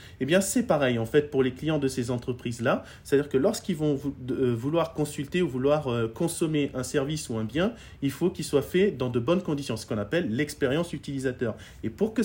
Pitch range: 110-145 Hz